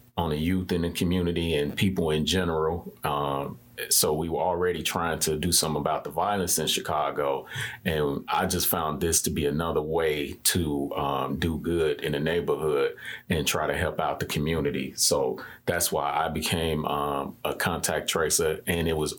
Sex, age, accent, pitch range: male, 30-49, American, 75-90 Hz